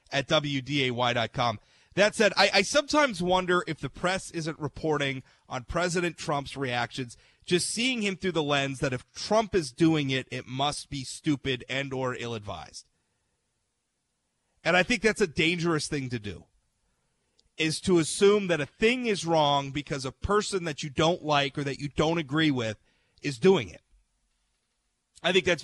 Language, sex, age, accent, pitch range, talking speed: English, male, 30-49, American, 130-170 Hz, 170 wpm